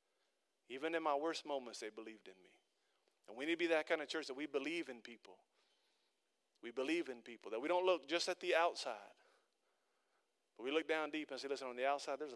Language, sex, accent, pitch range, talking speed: English, male, American, 125-185 Hz, 230 wpm